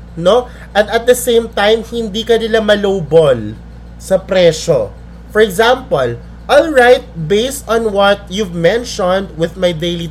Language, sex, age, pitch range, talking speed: Filipino, male, 20-39, 155-210 Hz, 140 wpm